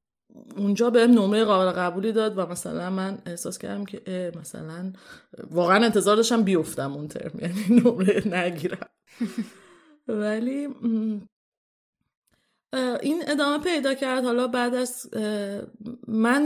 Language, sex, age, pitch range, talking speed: Persian, female, 30-49, 180-235 Hz, 115 wpm